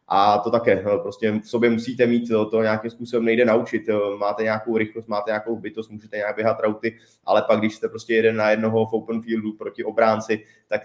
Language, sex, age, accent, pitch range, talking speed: Czech, male, 20-39, native, 105-115 Hz, 205 wpm